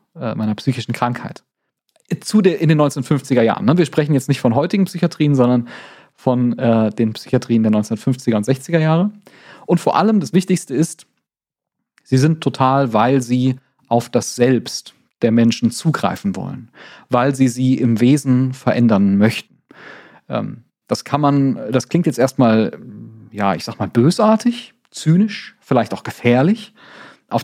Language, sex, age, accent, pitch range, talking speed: German, male, 40-59, German, 120-150 Hz, 150 wpm